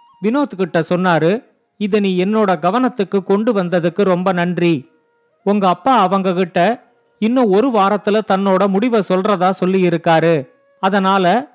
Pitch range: 175-220 Hz